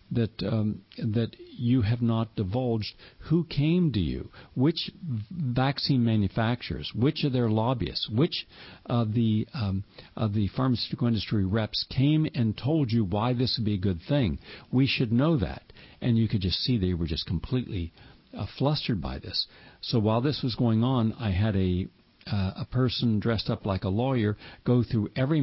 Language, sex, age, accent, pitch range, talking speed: English, male, 60-79, American, 100-125 Hz, 180 wpm